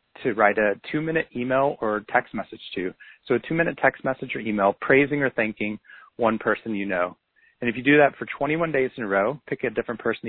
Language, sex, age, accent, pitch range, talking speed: English, male, 30-49, American, 110-135 Hz, 235 wpm